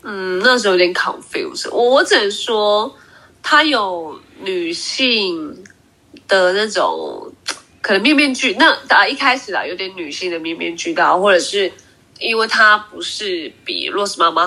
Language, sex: Chinese, female